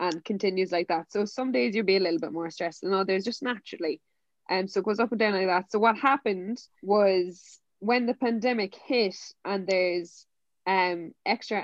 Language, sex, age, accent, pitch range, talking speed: English, female, 20-39, Irish, 185-215 Hz, 205 wpm